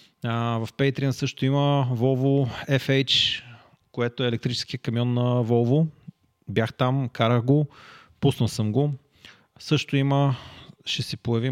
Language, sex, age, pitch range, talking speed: Bulgarian, male, 30-49, 115-135 Hz, 120 wpm